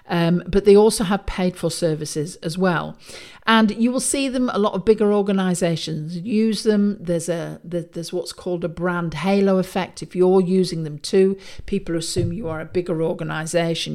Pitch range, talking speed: 165-210 Hz, 190 wpm